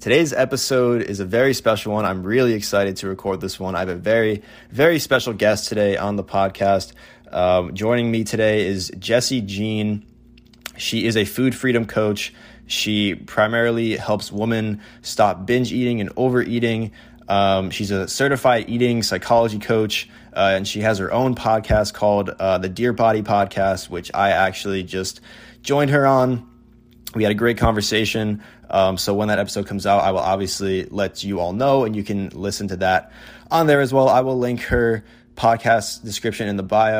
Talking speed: 180 wpm